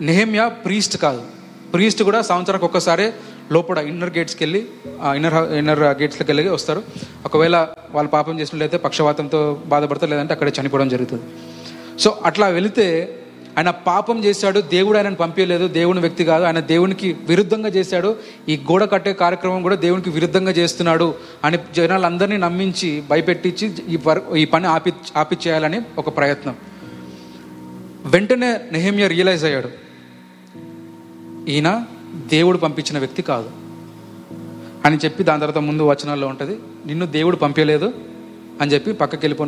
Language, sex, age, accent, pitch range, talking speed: Telugu, male, 30-49, native, 145-190 Hz, 130 wpm